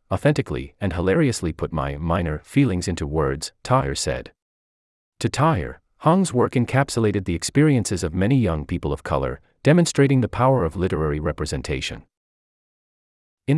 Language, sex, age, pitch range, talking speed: English, male, 30-49, 75-120 Hz, 135 wpm